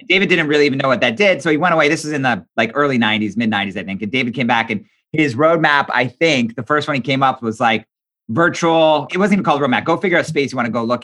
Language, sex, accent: English, male, American